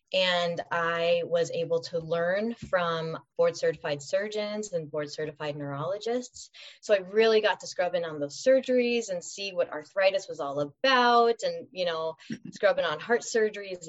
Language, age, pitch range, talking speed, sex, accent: English, 20-39, 165-230 Hz, 165 wpm, female, American